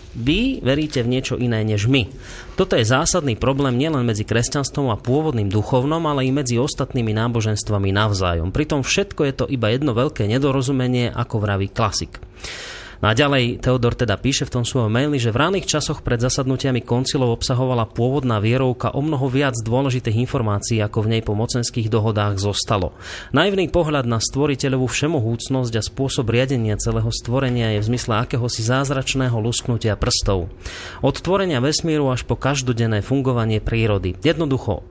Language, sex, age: Slovak, male, 30-49